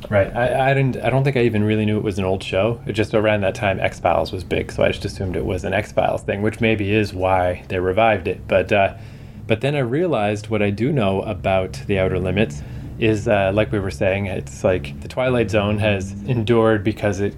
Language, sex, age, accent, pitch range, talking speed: English, male, 20-39, American, 95-110 Hz, 245 wpm